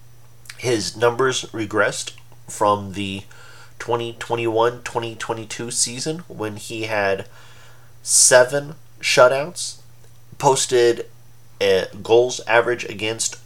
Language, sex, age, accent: English, male, 30-49, American